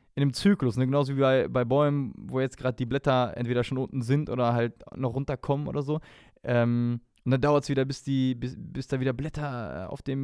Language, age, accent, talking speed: German, 20-39, German, 205 wpm